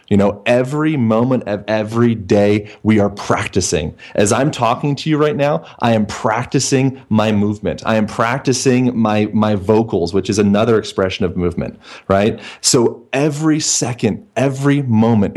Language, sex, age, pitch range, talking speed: English, male, 30-49, 105-130 Hz, 155 wpm